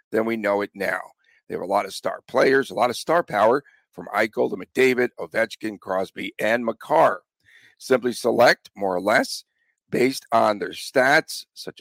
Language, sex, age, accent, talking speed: English, male, 50-69, American, 180 wpm